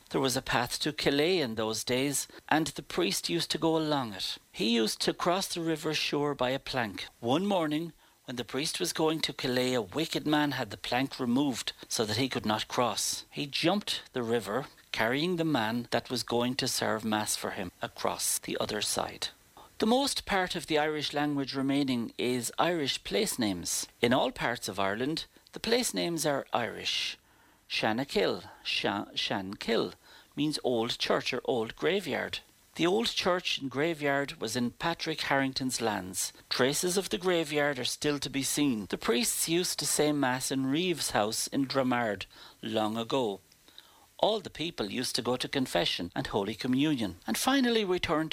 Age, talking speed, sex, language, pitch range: 60-79, 185 wpm, male, English, 120-160 Hz